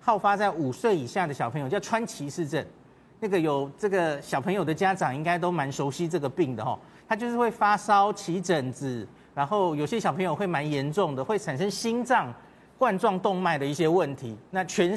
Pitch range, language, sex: 155-225 Hz, Chinese, male